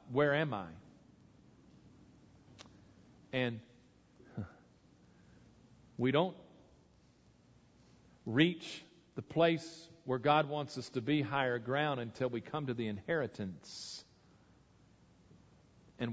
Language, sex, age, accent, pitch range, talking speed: English, male, 40-59, American, 120-145 Hz, 90 wpm